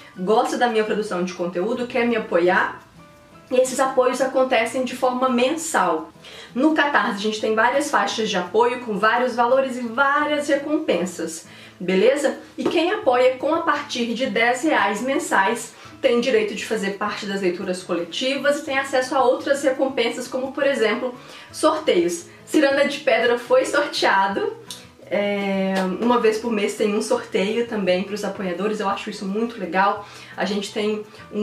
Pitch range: 205-275 Hz